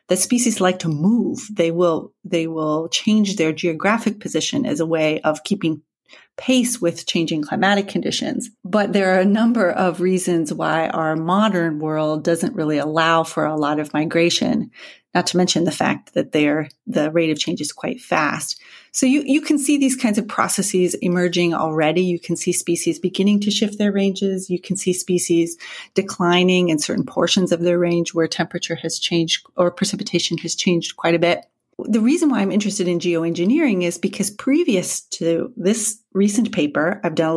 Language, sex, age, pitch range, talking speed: English, female, 30-49, 170-220 Hz, 185 wpm